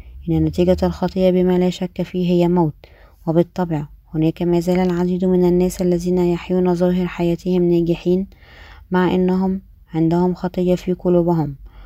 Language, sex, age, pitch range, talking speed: Arabic, female, 20-39, 170-185 Hz, 135 wpm